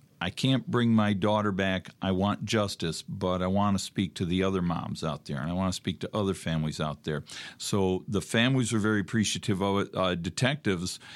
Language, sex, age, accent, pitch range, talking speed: English, male, 50-69, American, 90-110 Hz, 215 wpm